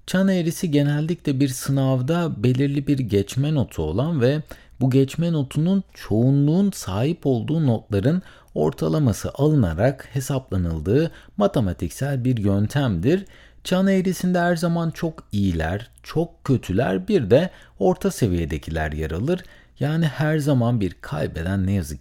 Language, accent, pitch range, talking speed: Turkish, native, 100-155 Hz, 125 wpm